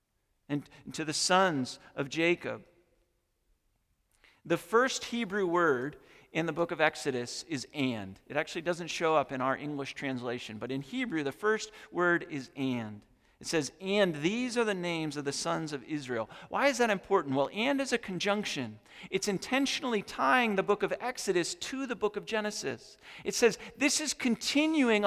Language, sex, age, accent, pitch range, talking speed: English, male, 40-59, American, 130-205 Hz, 170 wpm